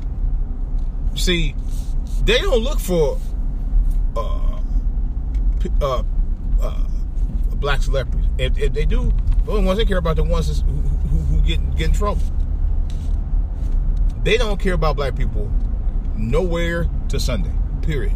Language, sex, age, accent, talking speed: English, male, 30-49, American, 125 wpm